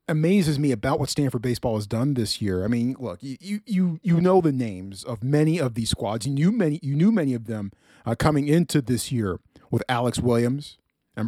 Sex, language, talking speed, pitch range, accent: male, English, 220 wpm, 115-175 Hz, American